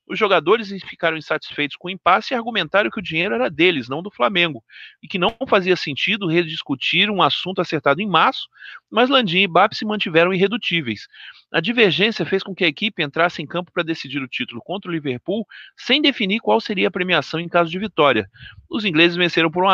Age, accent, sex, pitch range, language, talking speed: 40-59, Brazilian, male, 140-190 Hz, Portuguese, 200 wpm